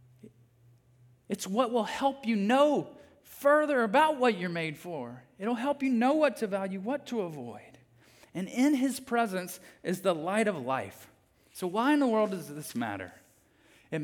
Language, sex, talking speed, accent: English, male, 170 wpm, American